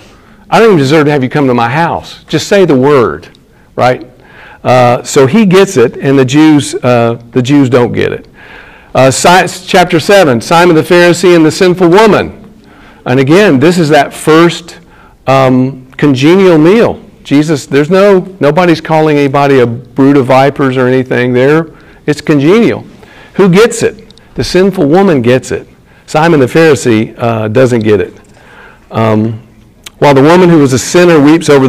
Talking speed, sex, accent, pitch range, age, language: 170 wpm, male, American, 125-165 Hz, 50-69, English